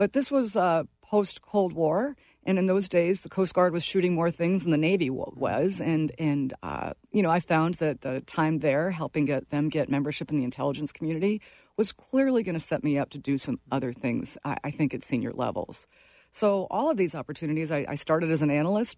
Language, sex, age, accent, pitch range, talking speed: English, female, 40-59, American, 145-180 Hz, 220 wpm